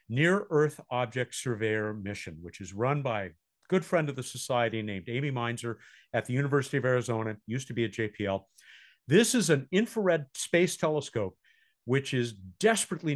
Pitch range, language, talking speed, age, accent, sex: 115-165 Hz, English, 165 wpm, 50-69, American, male